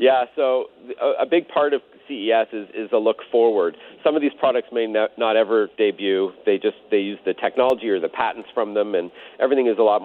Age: 40-59